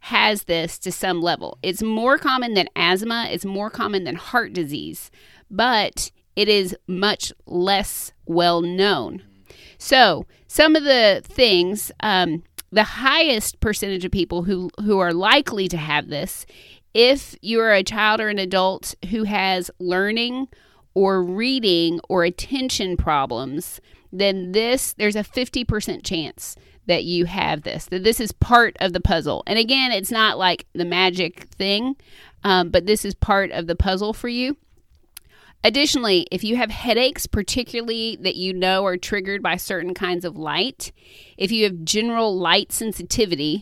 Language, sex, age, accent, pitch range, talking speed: English, female, 30-49, American, 180-230 Hz, 160 wpm